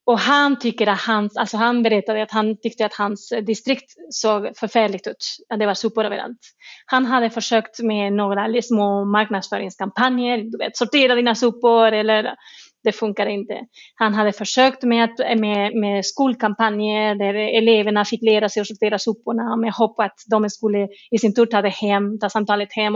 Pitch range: 215-255 Hz